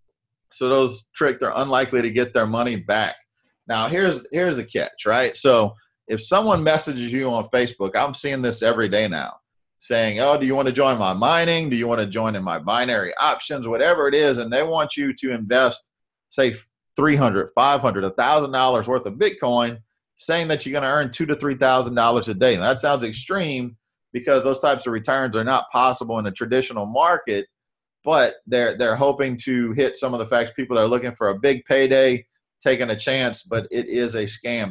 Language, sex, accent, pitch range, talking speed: English, male, American, 120-145 Hz, 195 wpm